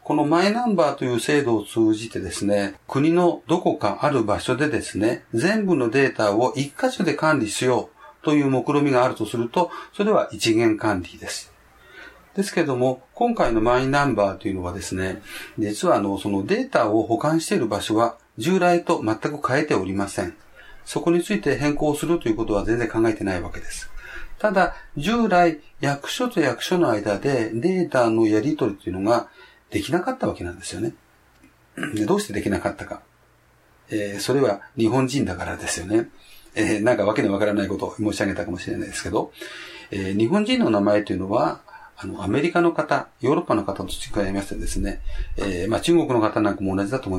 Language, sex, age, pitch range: Japanese, male, 40-59, 105-170 Hz